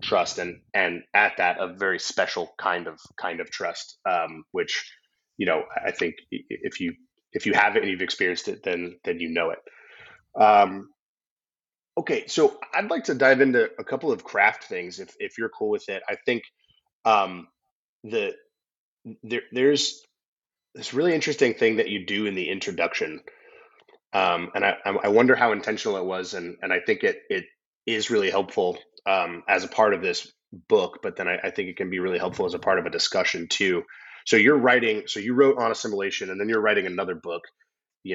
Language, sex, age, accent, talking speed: English, male, 30-49, American, 200 wpm